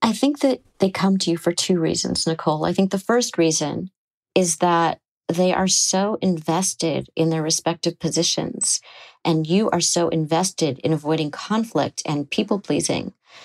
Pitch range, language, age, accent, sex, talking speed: 160-190 Hz, English, 40-59, American, female, 165 wpm